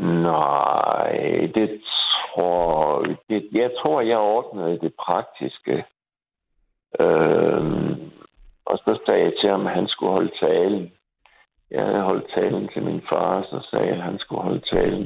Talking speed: 145 wpm